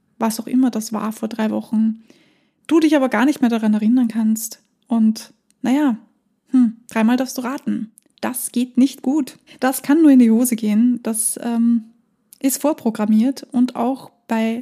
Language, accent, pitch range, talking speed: German, German, 225-265 Hz, 170 wpm